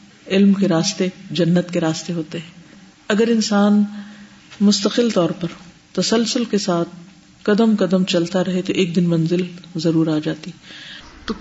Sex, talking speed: female, 145 wpm